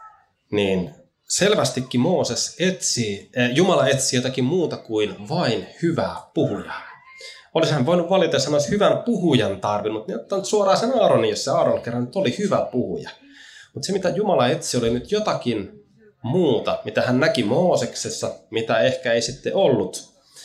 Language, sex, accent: Finnish, male, native